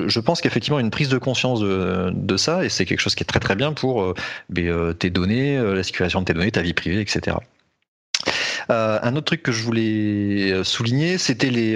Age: 30-49